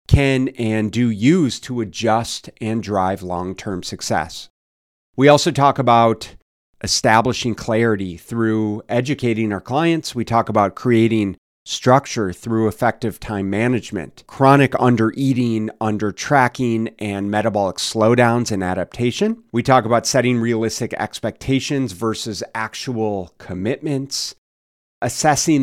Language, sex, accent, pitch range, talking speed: English, male, American, 100-125 Hz, 110 wpm